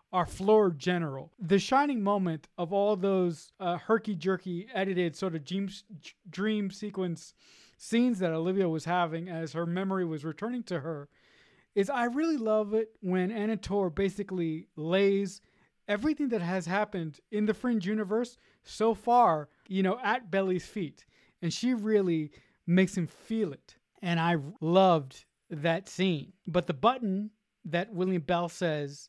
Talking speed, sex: 150 wpm, male